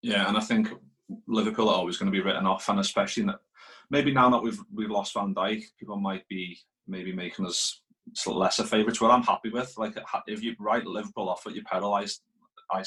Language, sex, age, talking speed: English, male, 20-39, 215 wpm